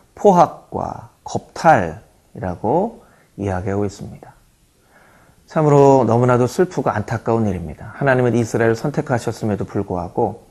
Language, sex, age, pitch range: Korean, male, 30-49, 110-160 Hz